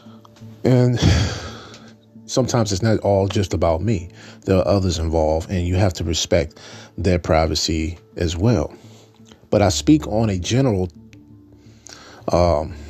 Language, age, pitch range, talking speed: English, 30-49, 95-115 Hz, 130 wpm